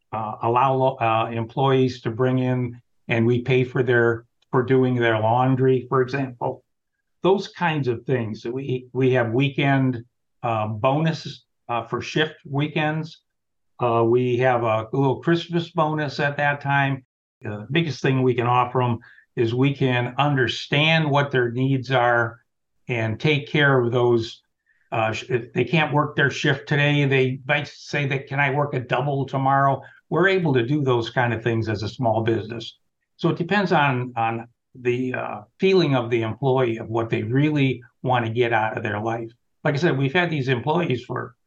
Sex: male